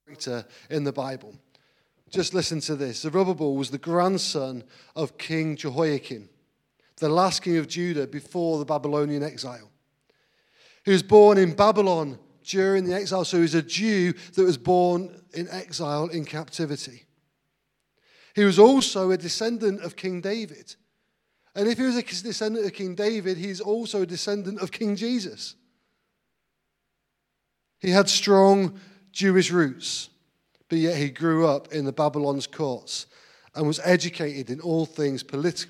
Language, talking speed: English, 150 wpm